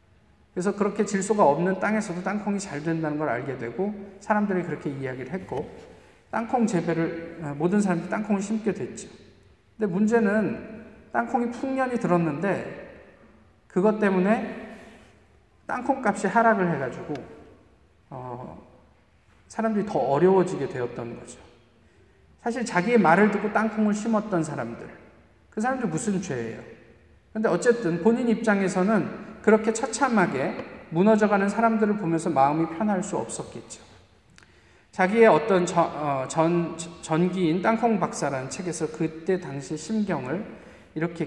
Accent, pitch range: native, 150-210 Hz